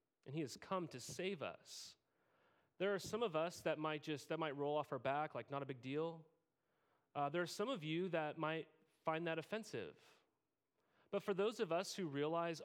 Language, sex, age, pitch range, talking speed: English, male, 30-49, 145-185 Hz, 210 wpm